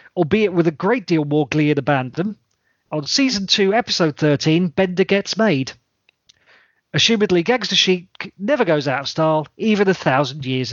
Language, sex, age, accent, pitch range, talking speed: English, male, 40-59, British, 145-205 Hz, 160 wpm